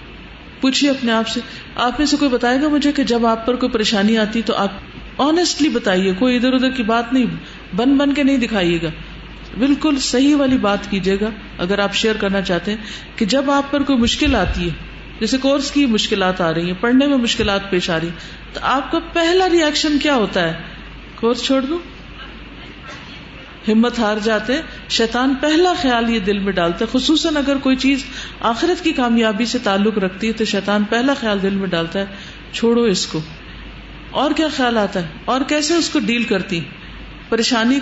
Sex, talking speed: female, 195 wpm